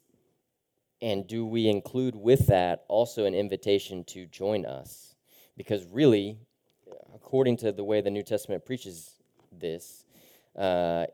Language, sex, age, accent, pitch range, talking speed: English, male, 30-49, American, 85-105 Hz, 130 wpm